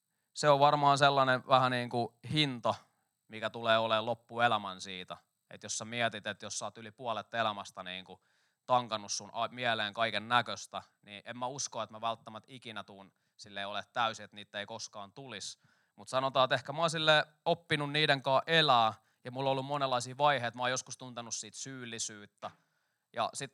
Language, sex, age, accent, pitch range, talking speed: Finnish, male, 20-39, native, 115-150 Hz, 180 wpm